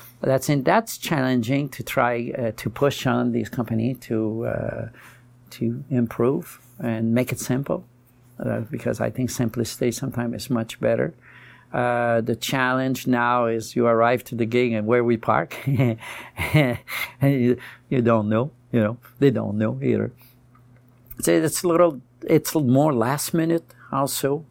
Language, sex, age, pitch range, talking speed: English, male, 60-79, 115-130 Hz, 155 wpm